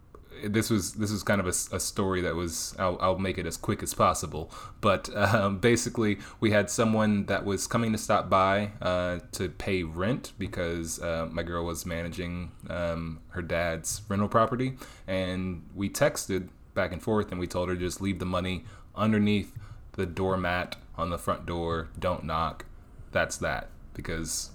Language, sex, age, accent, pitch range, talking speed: English, male, 20-39, American, 90-105 Hz, 180 wpm